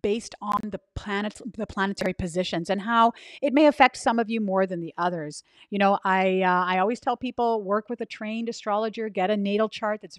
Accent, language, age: American, English, 40-59